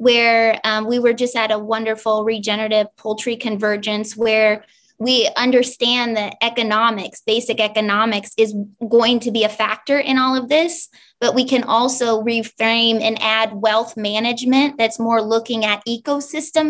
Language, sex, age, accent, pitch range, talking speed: English, female, 20-39, American, 215-245 Hz, 150 wpm